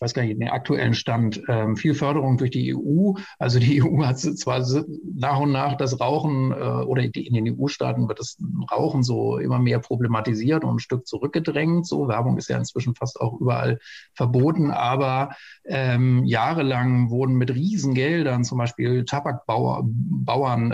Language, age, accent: German, 50-69, German